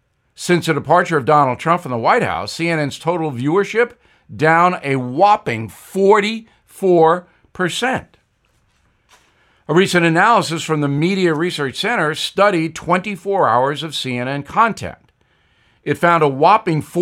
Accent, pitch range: American, 130-180 Hz